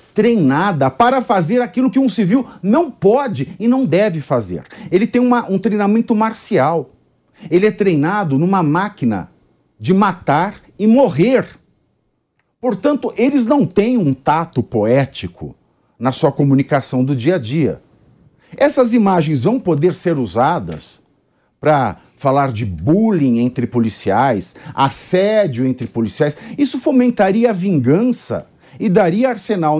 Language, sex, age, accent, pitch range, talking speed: English, male, 50-69, Brazilian, 145-225 Hz, 125 wpm